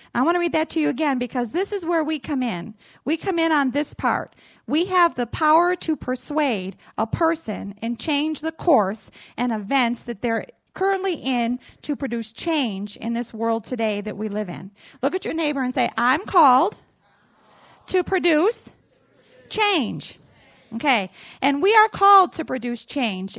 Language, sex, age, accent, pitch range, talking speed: English, female, 40-59, American, 230-310 Hz, 175 wpm